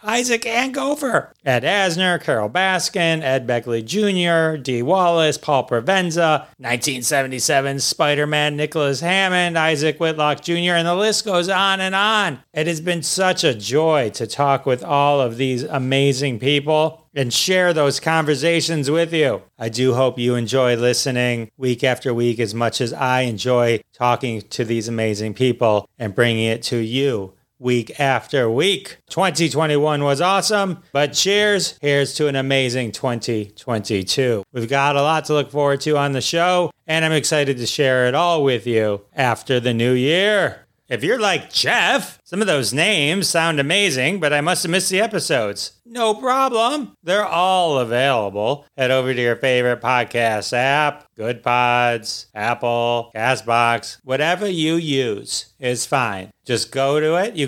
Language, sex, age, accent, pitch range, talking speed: English, male, 30-49, American, 120-170 Hz, 155 wpm